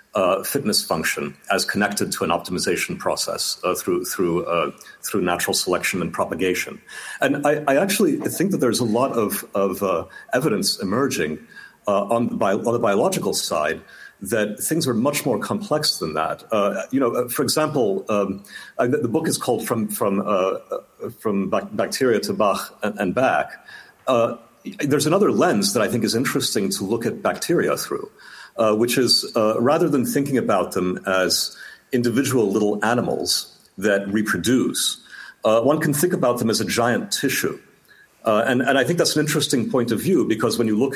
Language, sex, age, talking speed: English, male, 50-69, 180 wpm